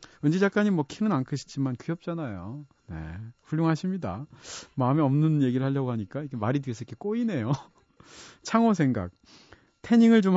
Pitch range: 115-165 Hz